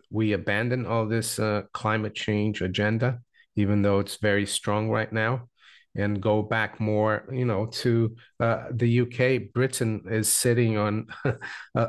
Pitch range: 105-120 Hz